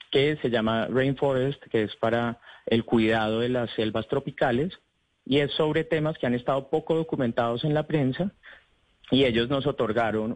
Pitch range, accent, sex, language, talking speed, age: 110-135 Hz, Colombian, male, Spanish, 170 wpm, 30-49